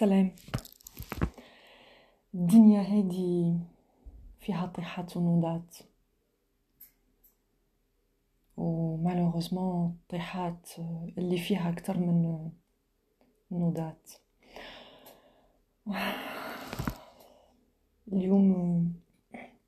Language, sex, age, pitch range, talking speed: Arabic, female, 30-49, 175-205 Hz, 50 wpm